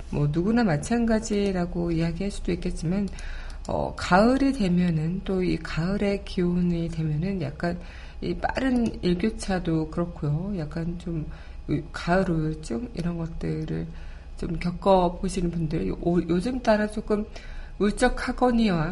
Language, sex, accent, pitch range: Korean, female, native, 165-205 Hz